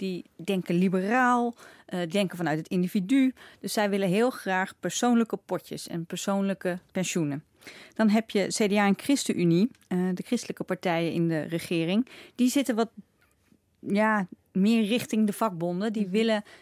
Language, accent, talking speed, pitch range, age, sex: Dutch, Dutch, 135 wpm, 180-220 Hz, 30-49, female